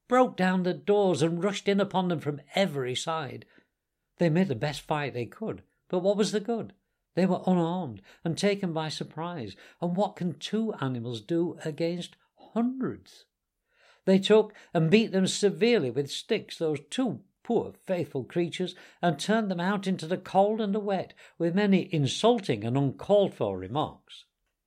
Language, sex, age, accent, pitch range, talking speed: English, male, 60-79, British, 150-205 Hz, 165 wpm